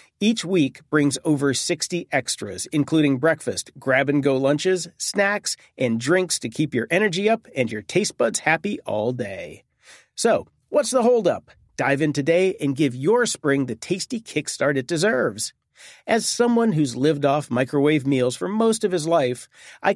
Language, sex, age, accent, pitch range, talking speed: English, male, 40-59, American, 140-190 Hz, 160 wpm